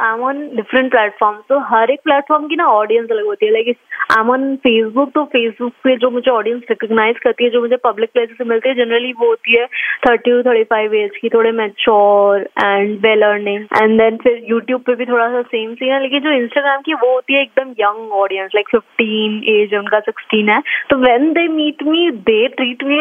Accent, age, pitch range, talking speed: native, 20-39, 230-290 Hz, 220 wpm